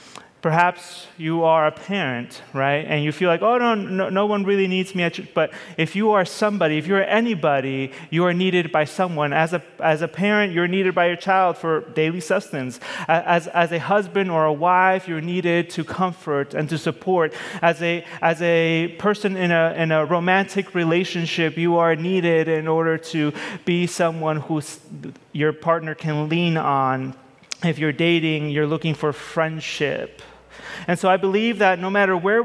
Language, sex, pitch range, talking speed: English, male, 150-180 Hz, 185 wpm